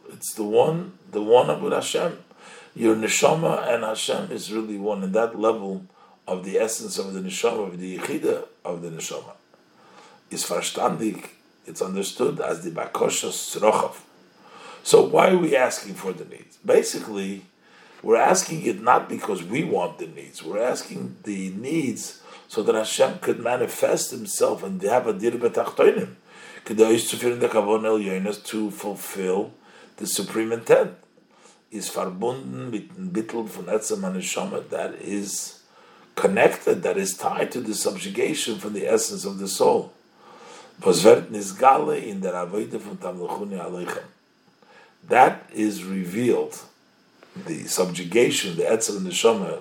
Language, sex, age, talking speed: English, male, 50-69, 125 wpm